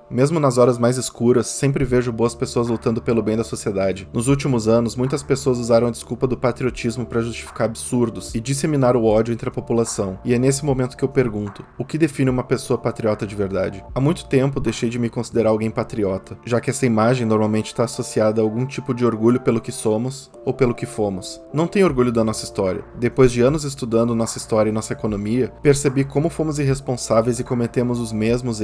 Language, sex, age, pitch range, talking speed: Portuguese, male, 20-39, 110-130 Hz, 210 wpm